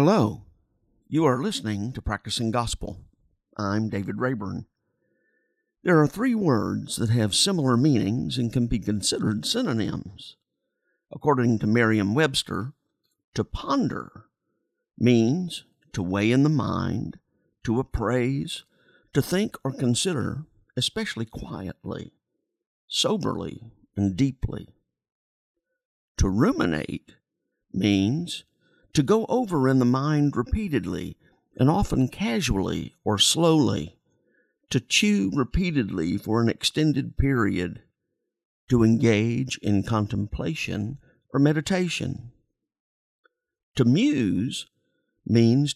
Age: 50-69